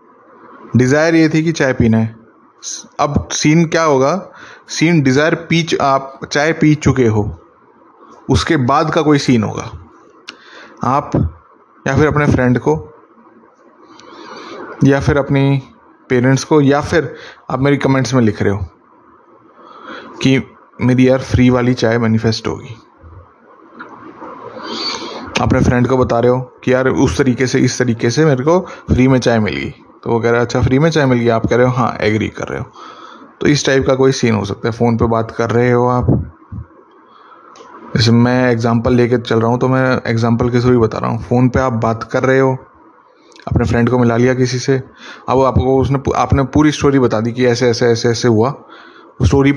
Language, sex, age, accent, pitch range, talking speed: Hindi, male, 20-39, native, 115-140 Hz, 185 wpm